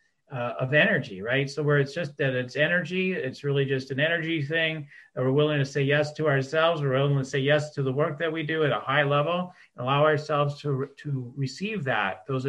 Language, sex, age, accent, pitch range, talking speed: English, male, 40-59, American, 125-155 Hz, 235 wpm